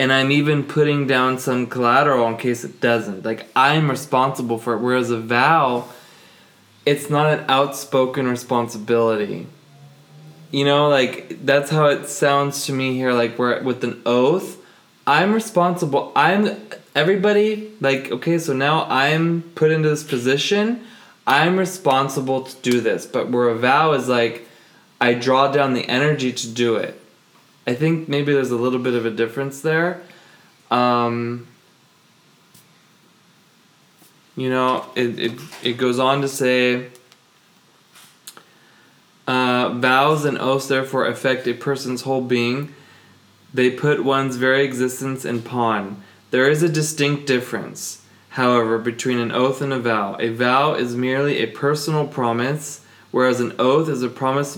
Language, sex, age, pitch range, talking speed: English, male, 20-39, 120-150 Hz, 145 wpm